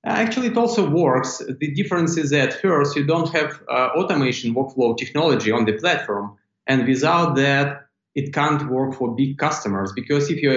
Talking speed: 175 wpm